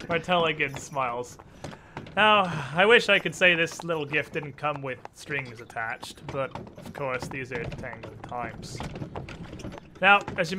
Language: English